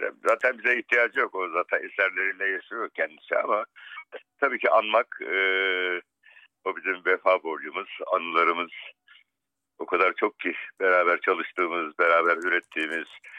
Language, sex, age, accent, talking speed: Turkish, male, 60-79, native, 120 wpm